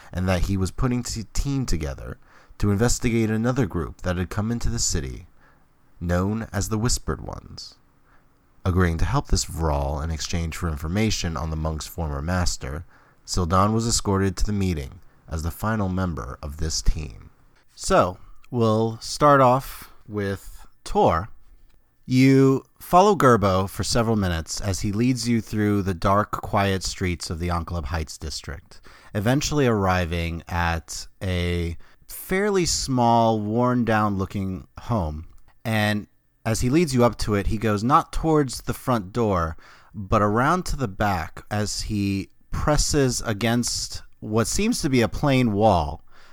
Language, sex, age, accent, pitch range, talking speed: English, male, 30-49, American, 90-115 Hz, 150 wpm